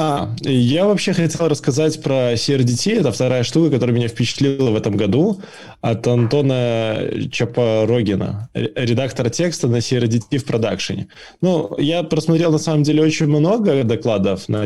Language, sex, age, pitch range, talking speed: Russian, male, 20-39, 115-150 Hz, 145 wpm